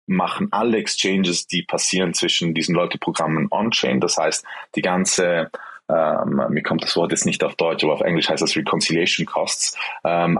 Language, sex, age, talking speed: German, male, 20-39, 175 wpm